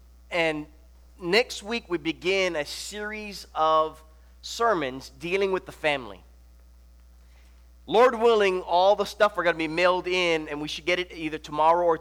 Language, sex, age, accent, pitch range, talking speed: English, male, 30-49, American, 140-180 Hz, 160 wpm